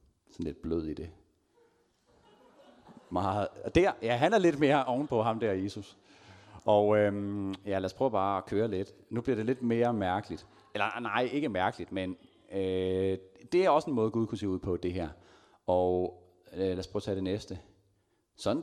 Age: 40-59